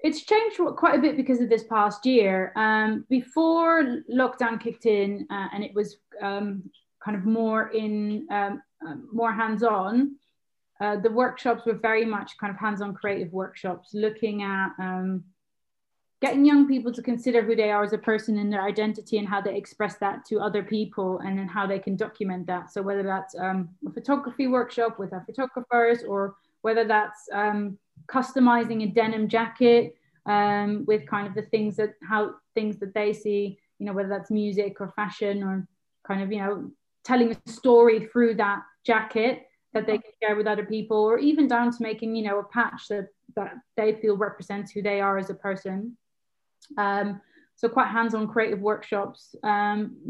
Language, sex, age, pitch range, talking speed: Romanian, female, 20-39, 200-235 Hz, 180 wpm